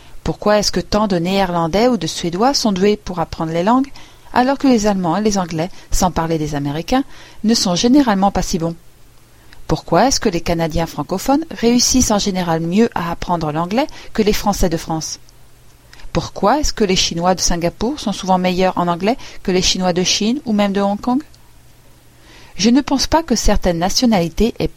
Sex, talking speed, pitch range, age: female, 195 wpm, 170-230 Hz, 40-59